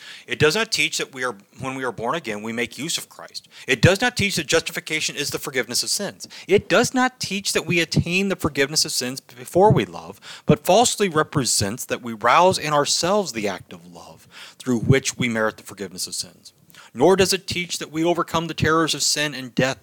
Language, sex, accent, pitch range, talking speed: English, male, American, 115-160 Hz, 225 wpm